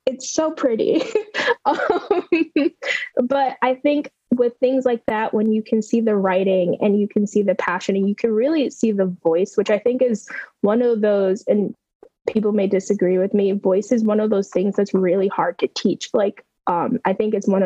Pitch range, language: 195-245 Hz, English